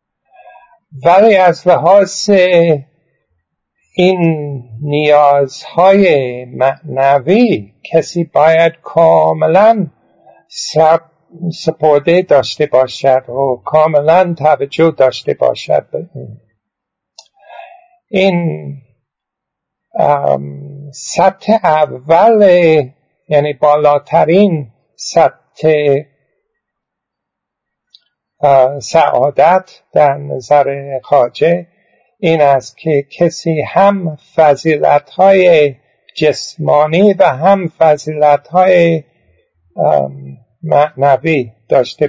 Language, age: Persian, 60-79